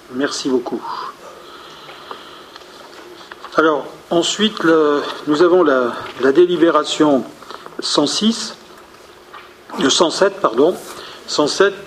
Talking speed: 75 wpm